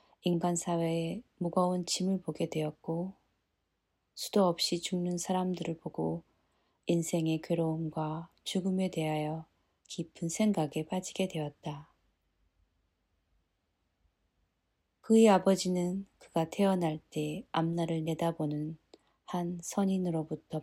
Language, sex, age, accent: Korean, female, 20-39, native